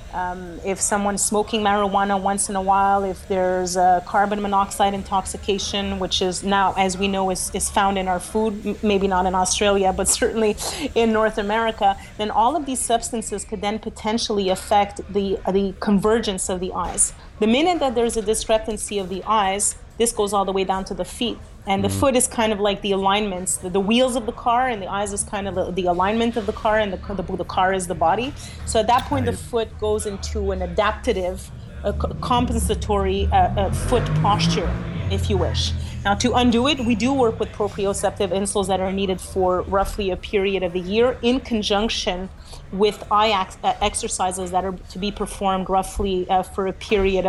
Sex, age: female, 30-49